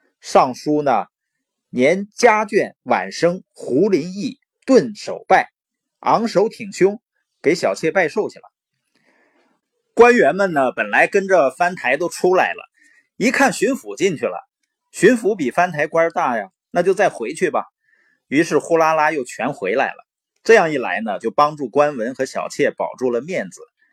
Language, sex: Chinese, male